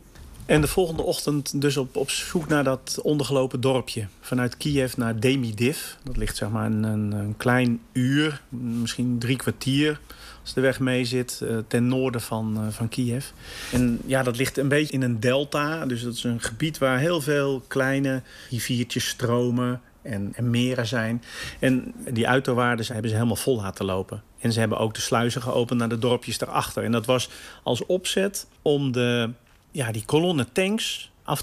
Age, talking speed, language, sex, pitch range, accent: 40-59, 180 wpm, Dutch, male, 115-130 Hz, Dutch